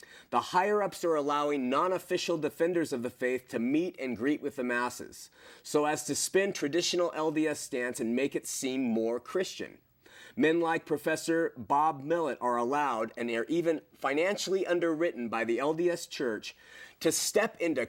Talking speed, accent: 160 wpm, American